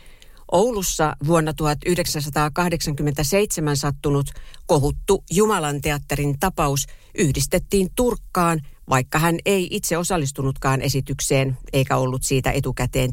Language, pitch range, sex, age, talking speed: Finnish, 135-175 Hz, female, 60-79, 90 wpm